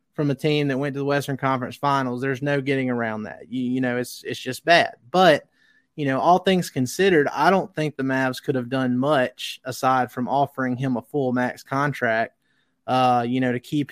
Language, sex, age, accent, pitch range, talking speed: English, male, 20-39, American, 125-145 Hz, 215 wpm